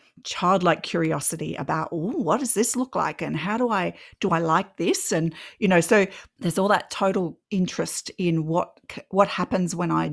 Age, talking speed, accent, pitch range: 40-59, 185 wpm, Australian, 175-215 Hz